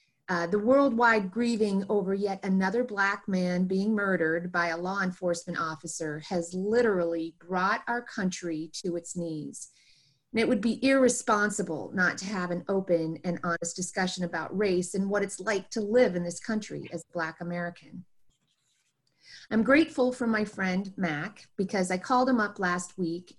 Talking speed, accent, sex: 165 wpm, American, female